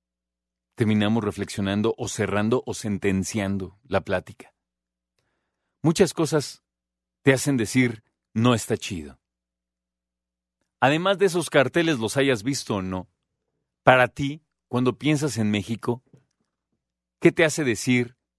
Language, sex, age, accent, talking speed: Spanish, male, 40-59, Mexican, 115 wpm